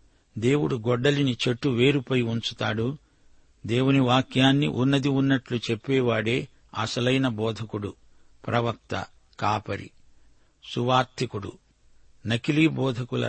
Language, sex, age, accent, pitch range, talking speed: Telugu, male, 50-69, native, 115-130 Hz, 75 wpm